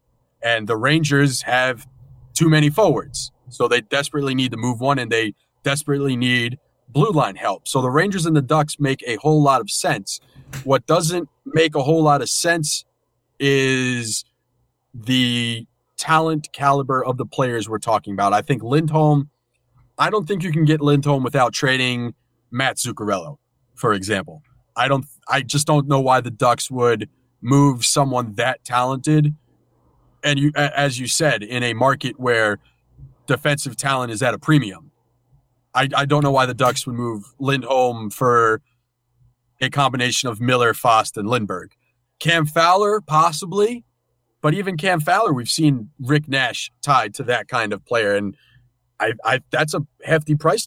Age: 30-49